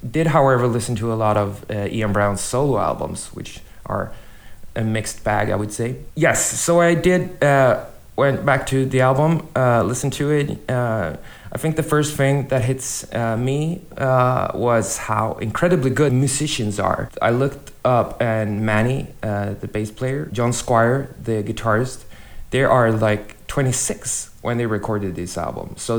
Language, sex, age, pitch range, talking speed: English, male, 20-39, 105-135 Hz, 170 wpm